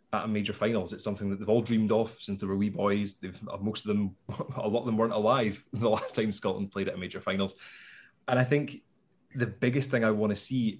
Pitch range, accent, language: 105-130 Hz, British, English